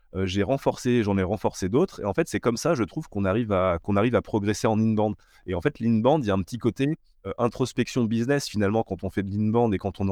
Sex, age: male, 20-39